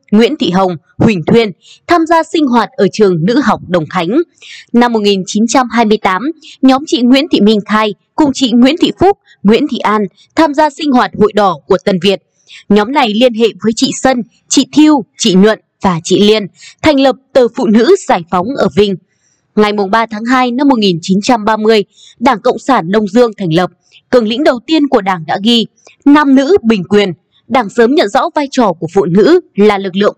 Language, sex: Vietnamese, female